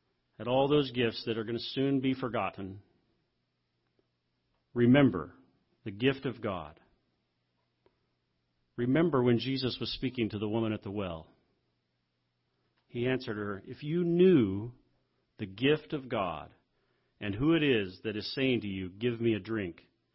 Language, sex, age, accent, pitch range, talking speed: English, male, 40-59, American, 90-130 Hz, 150 wpm